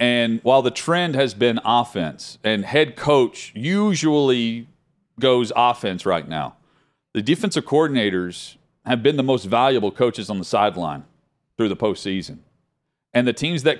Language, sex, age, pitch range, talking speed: English, male, 40-59, 105-145 Hz, 150 wpm